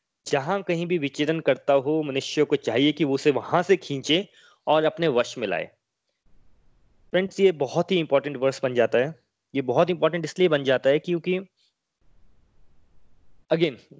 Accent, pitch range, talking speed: native, 140-175 Hz, 160 wpm